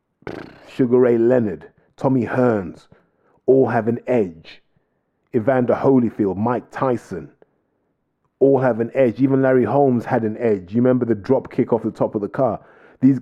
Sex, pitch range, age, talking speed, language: male, 100-125 Hz, 30-49, 160 wpm, English